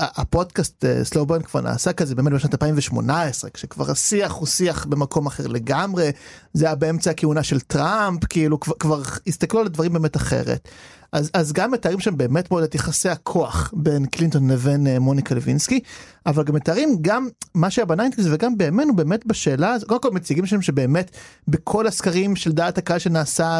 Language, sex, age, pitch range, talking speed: Hebrew, male, 30-49, 150-195 Hz, 175 wpm